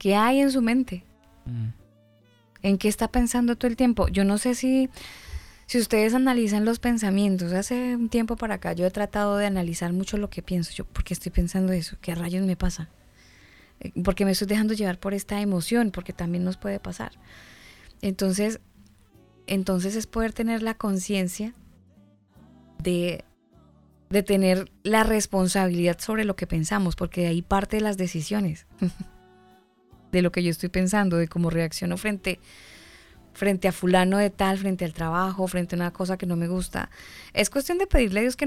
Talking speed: 175 wpm